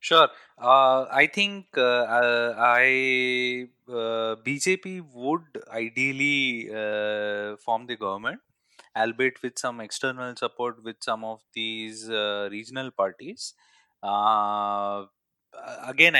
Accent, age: Indian, 20-39